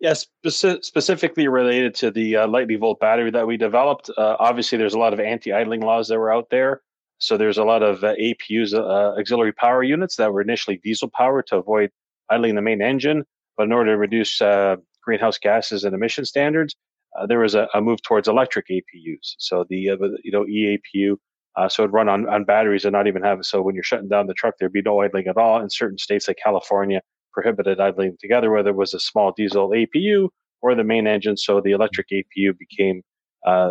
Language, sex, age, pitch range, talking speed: English, male, 30-49, 100-115 Hz, 215 wpm